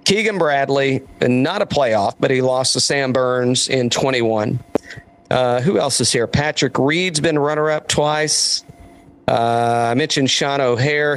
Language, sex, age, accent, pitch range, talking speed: English, male, 40-59, American, 125-150 Hz, 150 wpm